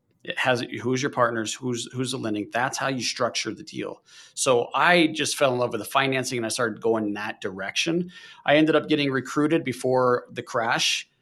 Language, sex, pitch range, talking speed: English, male, 120-145 Hz, 210 wpm